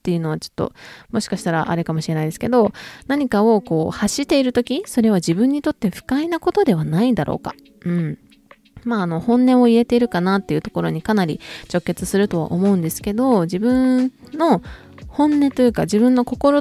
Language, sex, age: Japanese, female, 20-39